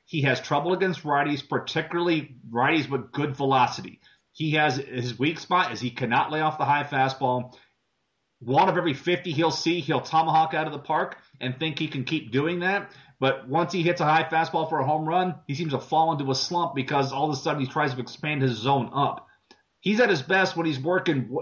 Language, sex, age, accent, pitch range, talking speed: English, male, 30-49, American, 135-170 Hz, 220 wpm